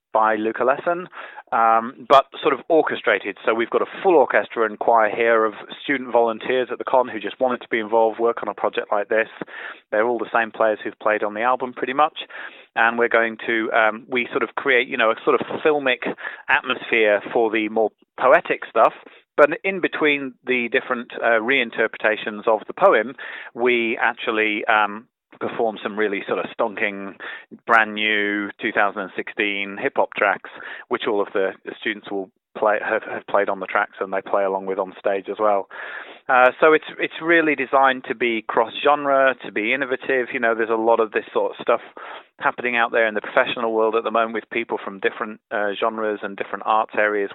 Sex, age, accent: male, 30-49, British